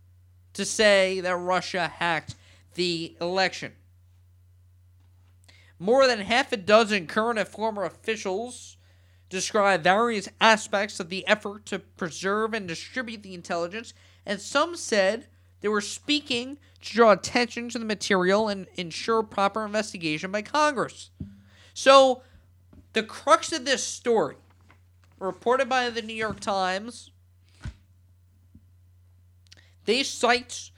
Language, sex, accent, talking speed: English, male, American, 115 wpm